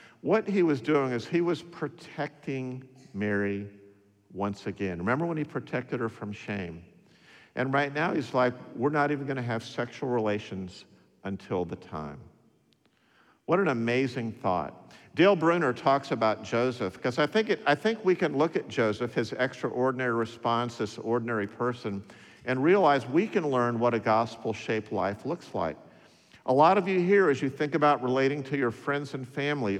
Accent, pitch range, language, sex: American, 110-150 Hz, English, male